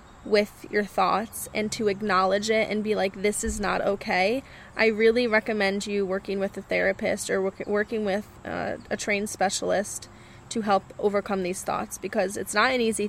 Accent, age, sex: American, 10-29, female